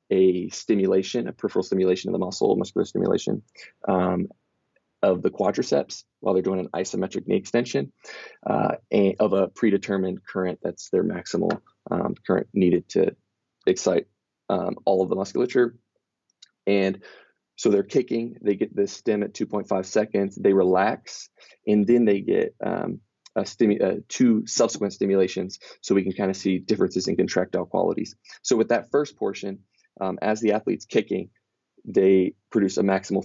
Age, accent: 20-39, American